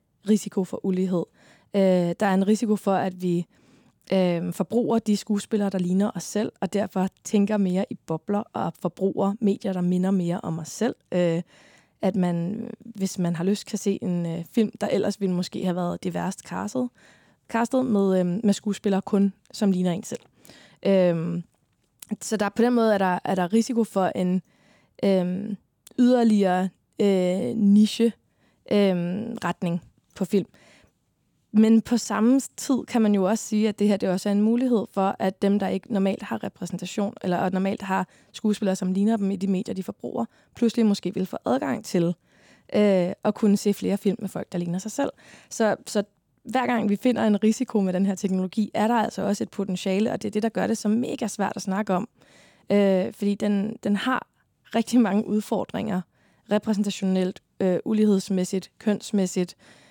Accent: native